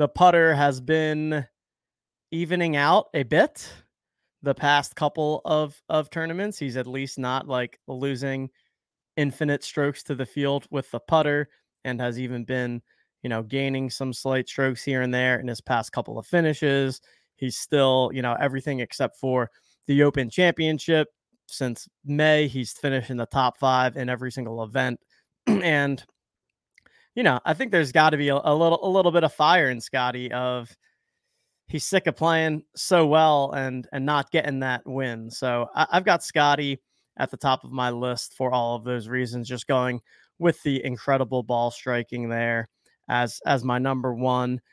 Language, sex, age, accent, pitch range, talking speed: English, male, 20-39, American, 125-155 Hz, 175 wpm